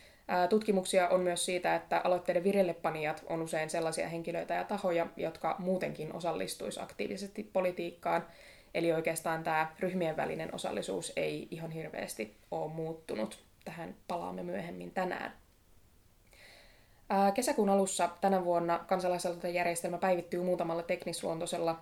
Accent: native